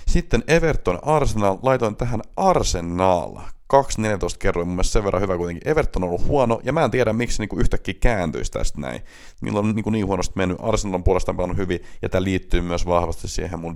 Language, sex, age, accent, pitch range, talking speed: Finnish, male, 30-49, native, 90-115 Hz, 190 wpm